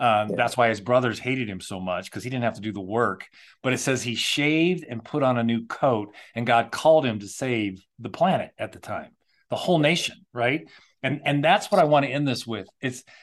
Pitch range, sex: 115-150 Hz, male